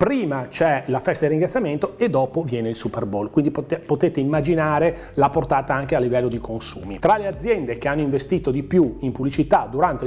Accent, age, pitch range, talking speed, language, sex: native, 30-49, 120-150 Hz, 195 wpm, Italian, male